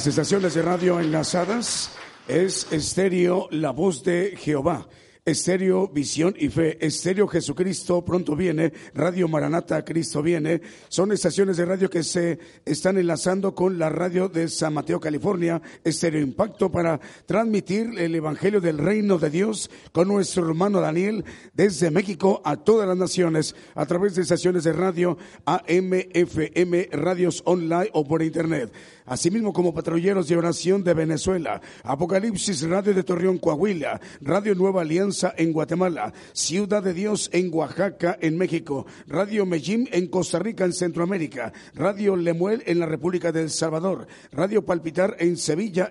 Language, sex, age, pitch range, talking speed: Spanish, male, 50-69, 165-190 Hz, 145 wpm